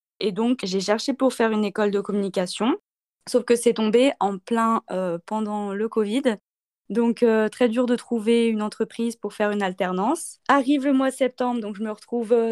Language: French